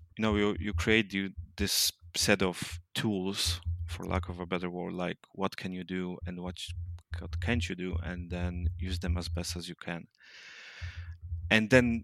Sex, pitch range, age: male, 85-100 Hz, 30-49